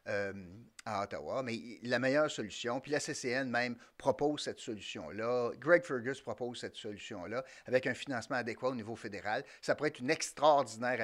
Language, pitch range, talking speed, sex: French, 120-175 Hz, 170 wpm, male